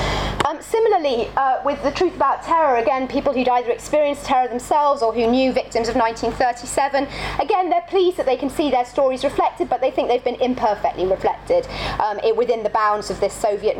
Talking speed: 200 wpm